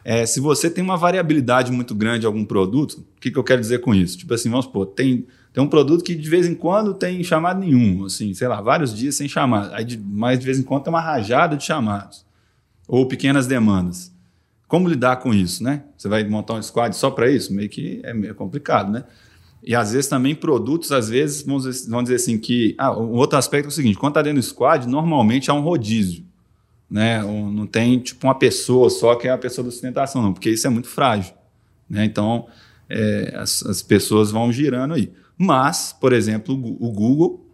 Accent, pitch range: Brazilian, 110-140 Hz